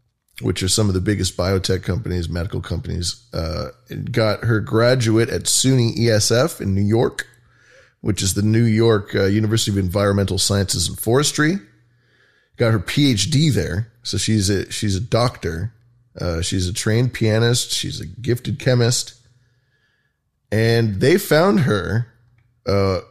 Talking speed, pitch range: 150 wpm, 100-125 Hz